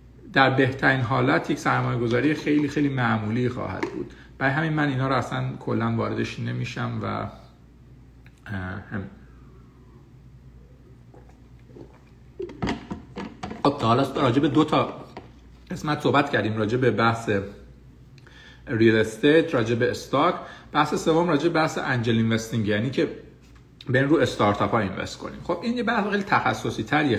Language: Persian